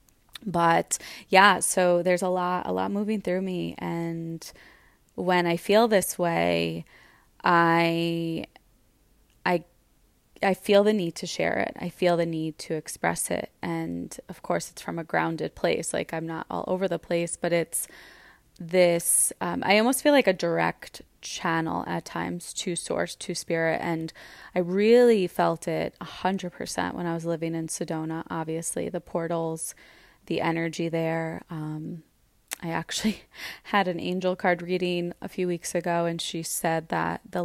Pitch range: 160-180 Hz